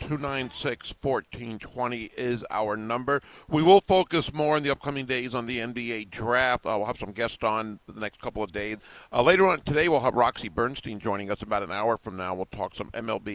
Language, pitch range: English, 110-145 Hz